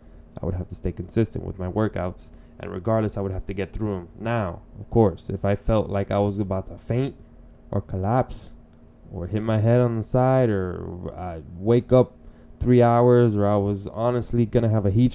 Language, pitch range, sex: English, 90-115 Hz, male